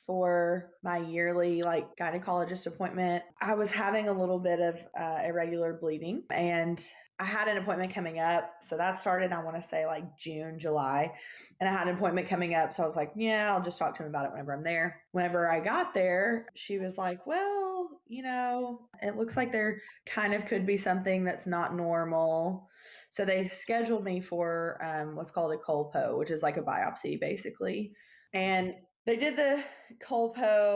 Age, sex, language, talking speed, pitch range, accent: 20-39, female, English, 190 wpm, 170-225 Hz, American